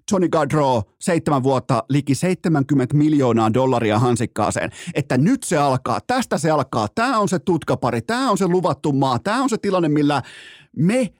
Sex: male